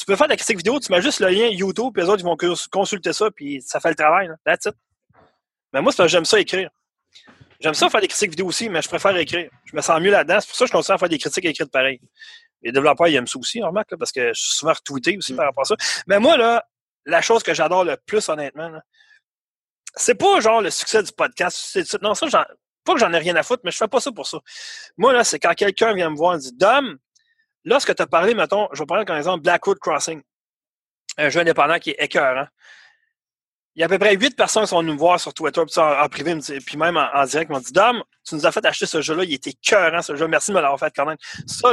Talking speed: 285 wpm